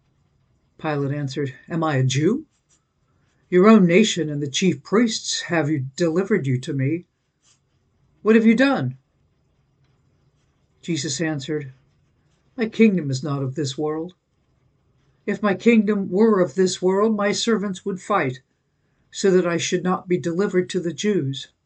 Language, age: English, 60-79